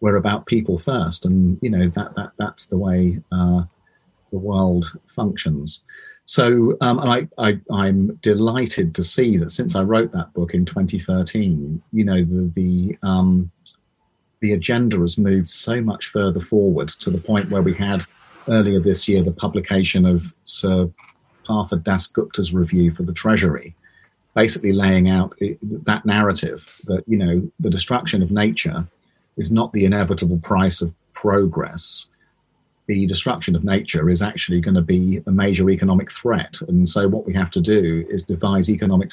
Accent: British